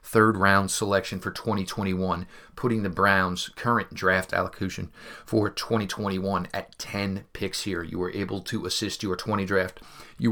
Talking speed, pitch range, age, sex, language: 150 wpm, 95-105 Hz, 30-49, male, English